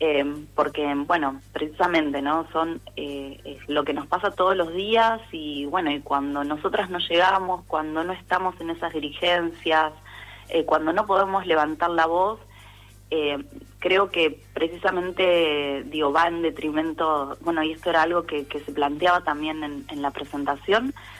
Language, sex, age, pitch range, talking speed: Spanish, female, 20-39, 145-175 Hz, 155 wpm